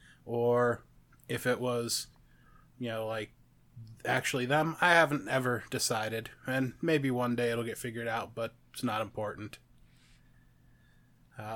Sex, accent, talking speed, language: male, American, 135 wpm, English